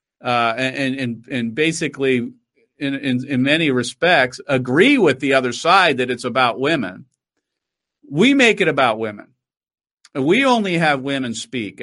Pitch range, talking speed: 165-230 Hz, 145 wpm